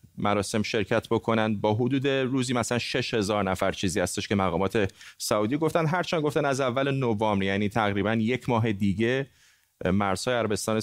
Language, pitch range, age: Persian, 105-135 Hz, 30-49